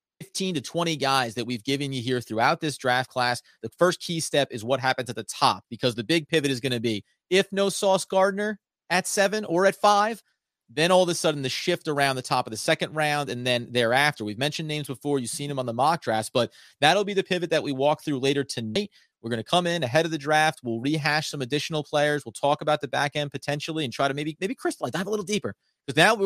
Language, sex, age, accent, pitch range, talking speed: English, male, 30-49, American, 125-165 Hz, 255 wpm